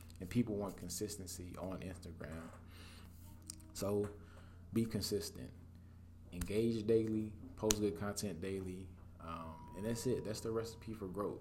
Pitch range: 85-105 Hz